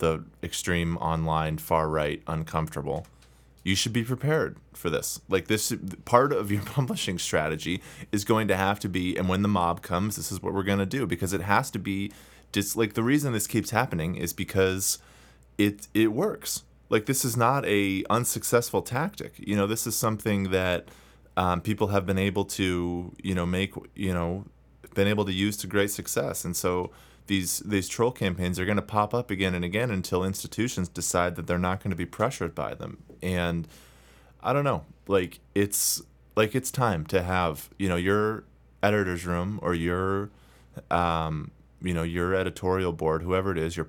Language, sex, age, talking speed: English, male, 20-39, 190 wpm